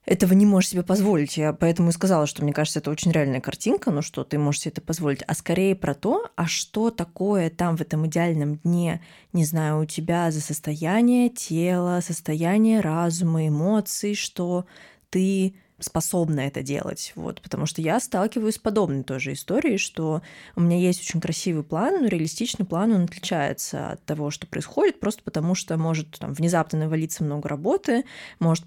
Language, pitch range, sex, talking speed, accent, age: Russian, 155-195 Hz, female, 180 wpm, native, 20-39